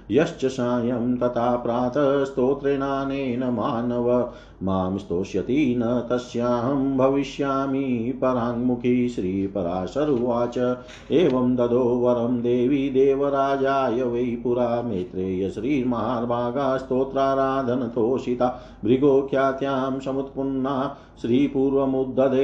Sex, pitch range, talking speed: male, 120-135 Hz, 75 wpm